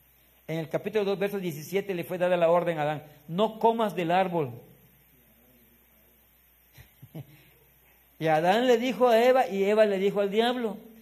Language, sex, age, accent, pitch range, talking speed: Spanish, male, 50-69, Mexican, 140-200 Hz, 160 wpm